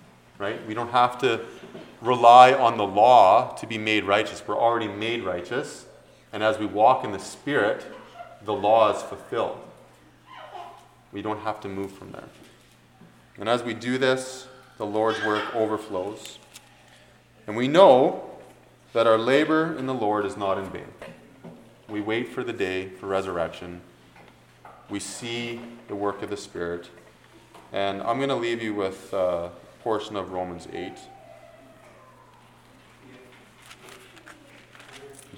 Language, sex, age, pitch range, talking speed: English, male, 30-49, 100-130 Hz, 140 wpm